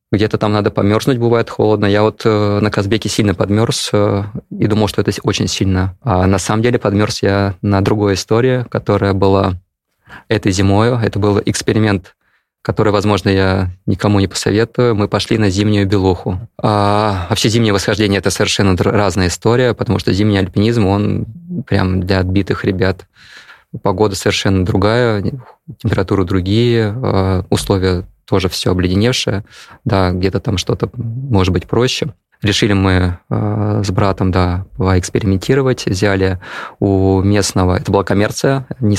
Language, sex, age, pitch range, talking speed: Russian, male, 20-39, 95-110 Hz, 140 wpm